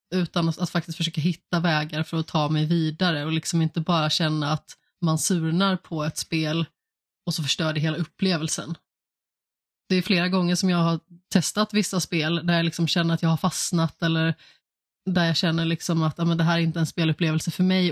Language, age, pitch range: Swedish, 20-39, 160-185 Hz